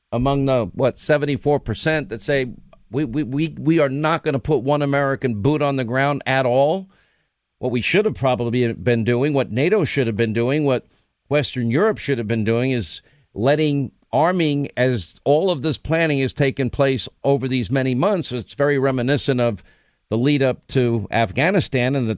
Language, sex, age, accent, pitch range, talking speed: English, male, 50-69, American, 120-145 Hz, 185 wpm